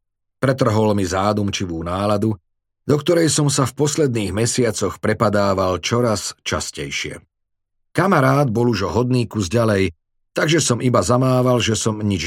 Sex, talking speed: male, 135 wpm